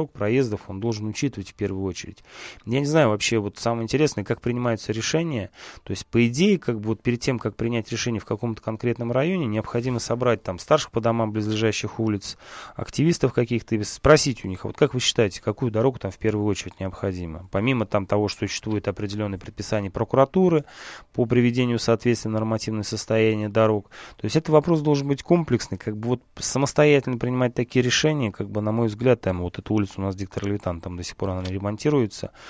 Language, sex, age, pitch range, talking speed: Russian, male, 20-39, 100-120 Hz, 190 wpm